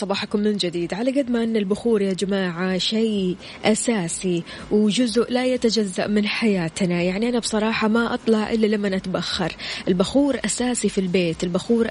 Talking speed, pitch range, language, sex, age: 150 wpm, 185-230 Hz, Arabic, female, 20-39